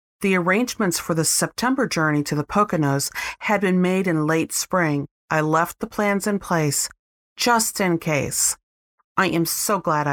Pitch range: 155-210 Hz